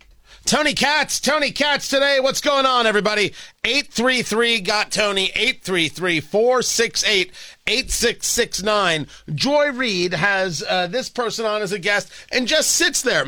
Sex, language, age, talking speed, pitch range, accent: male, English, 40-59, 115 wpm, 155-240 Hz, American